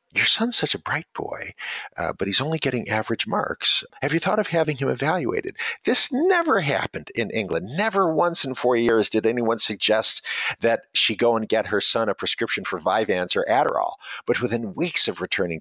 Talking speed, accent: 195 wpm, American